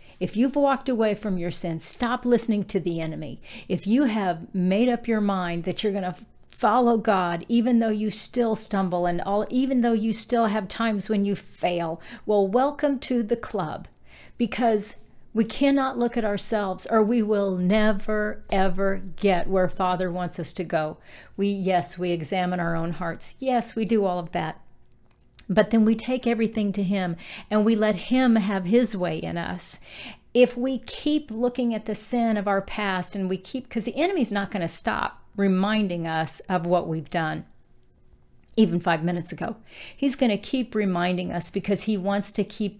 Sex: female